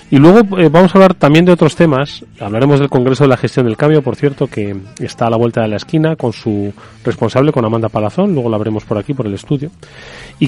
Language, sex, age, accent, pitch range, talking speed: Spanish, male, 30-49, Spanish, 115-150 Hz, 245 wpm